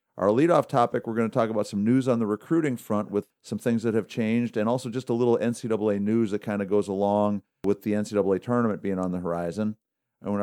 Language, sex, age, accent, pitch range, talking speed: English, male, 50-69, American, 100-125 Hz, 240 wpm